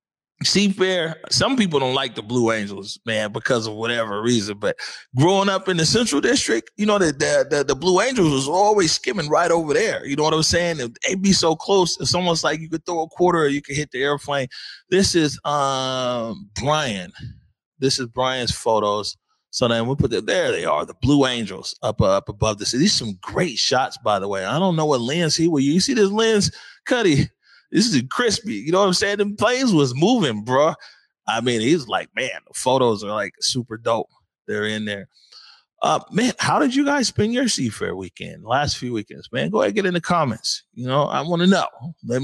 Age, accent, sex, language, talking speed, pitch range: 30-49, American, male, English, 225 wpm, 115-175 Hz